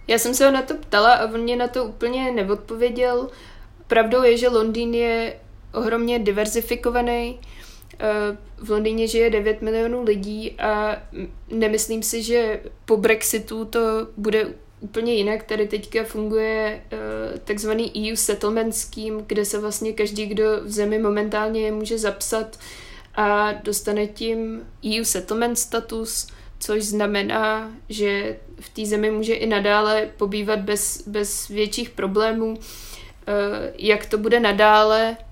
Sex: female